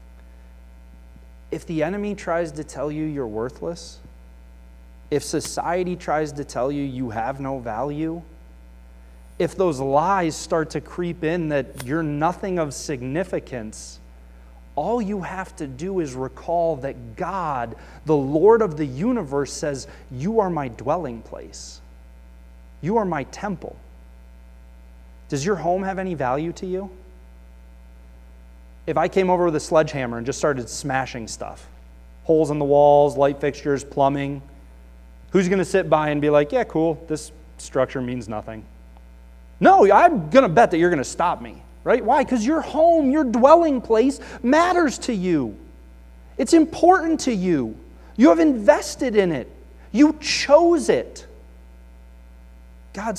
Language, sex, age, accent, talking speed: English, male, 30-49, American, 150 wpm